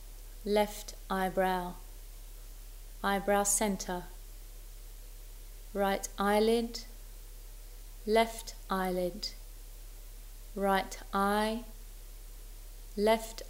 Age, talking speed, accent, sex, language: 30-49, 50 wpm, British, female, English